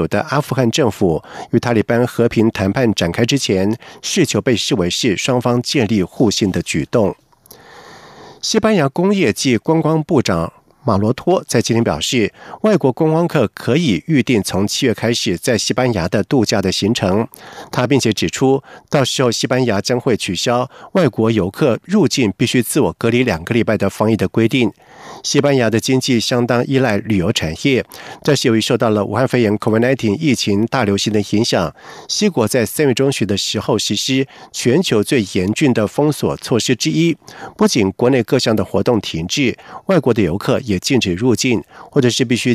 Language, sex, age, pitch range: Chinese, male, 50-69, 105-135 Hz